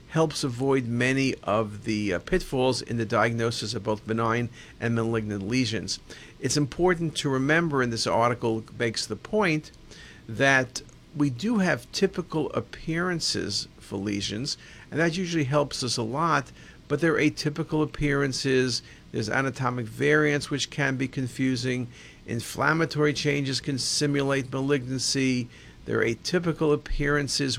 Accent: American